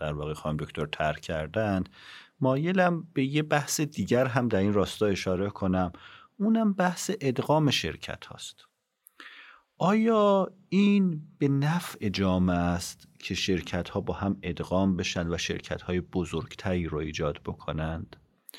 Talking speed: 135 wpm